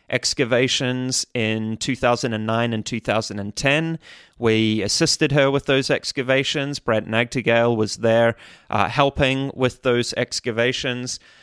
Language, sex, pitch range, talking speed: English, male, 110-130 Hz, 105 wpm